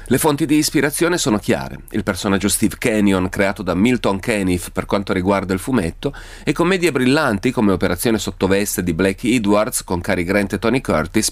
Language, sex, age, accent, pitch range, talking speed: Italian, male, 30-49, native, 95-125 Hz, 180 wpm